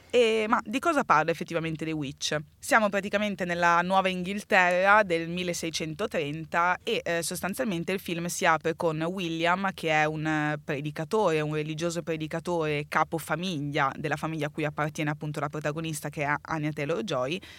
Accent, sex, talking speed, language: native, female, 155 wpm, Italian